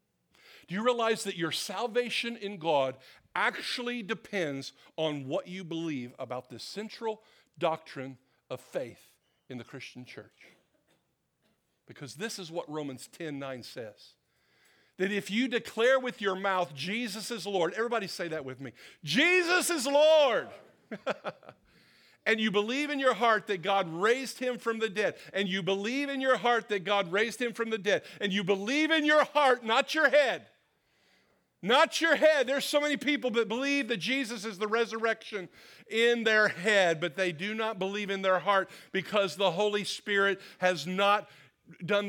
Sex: male